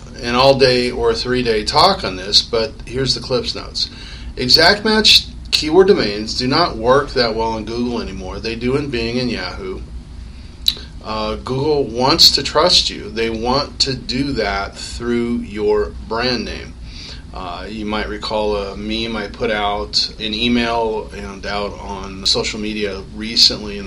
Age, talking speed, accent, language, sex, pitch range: 40-59, 160 wpm, American, English, male, 100-125 Hz